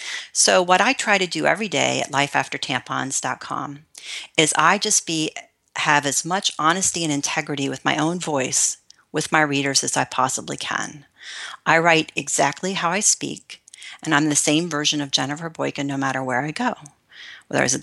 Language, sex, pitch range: English, female, 145-180 Hz